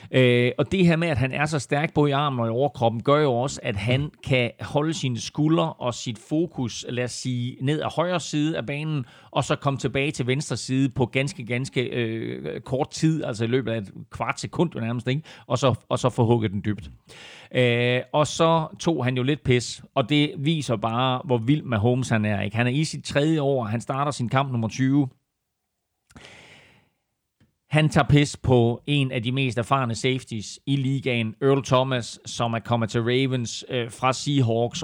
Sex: male